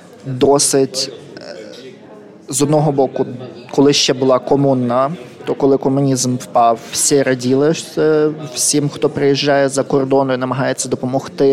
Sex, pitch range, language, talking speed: male, 130-150 Hz, Ukrainian, 115 wpm